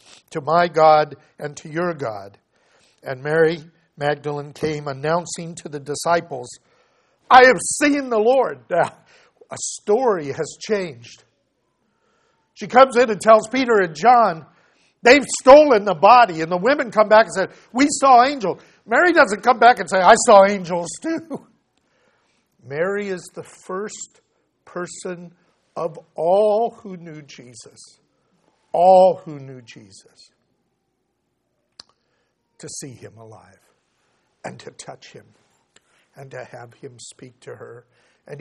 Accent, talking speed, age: American, 135 wpm, 50-69